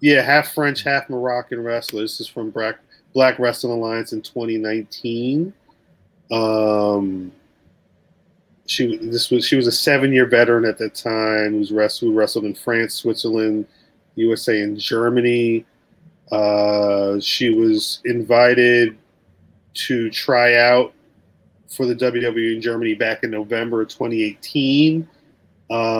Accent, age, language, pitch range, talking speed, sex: American, 30-49, English, 105-125 Hz, 125 wpm, male